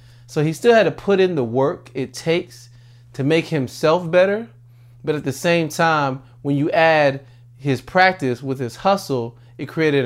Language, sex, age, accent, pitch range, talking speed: English, male, 30-49, American, 125-165 Hz, 180 wpm